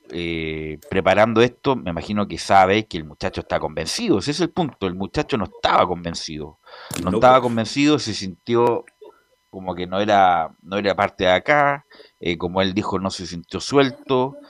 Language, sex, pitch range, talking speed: Spanish, male, 95-130 Hz, 175 wpm